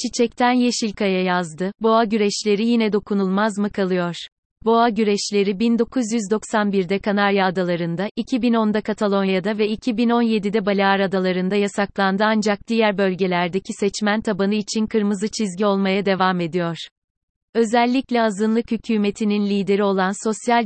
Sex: female